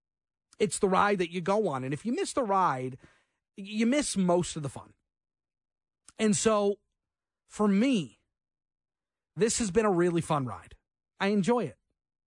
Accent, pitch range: American, 145-195 Hz